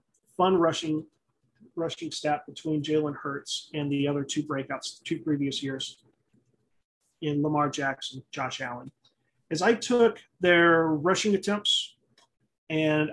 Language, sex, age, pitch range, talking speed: English, male, 30-49, 155-205 Hz, 130 wpm